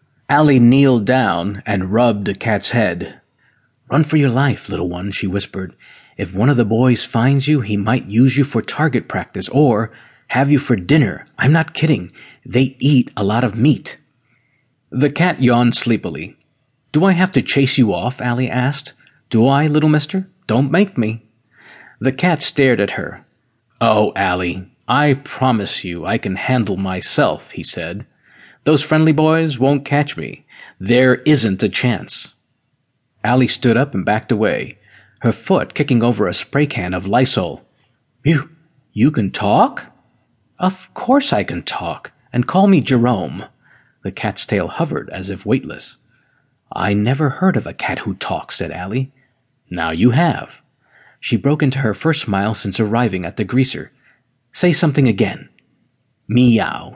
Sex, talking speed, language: male, 160 wpm, English